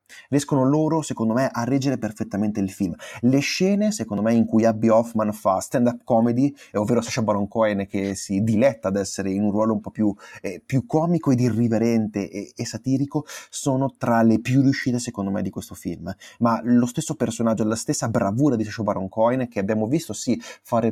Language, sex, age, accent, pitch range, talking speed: Italian, male, 30-49, native, 105-130 Hz, 200 wpm